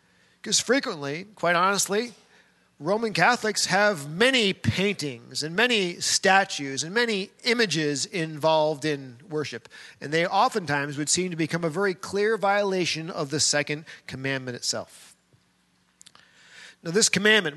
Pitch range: 155-210 Hz